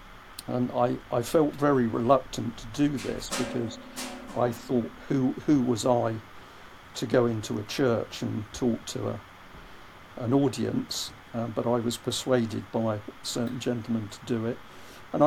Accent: British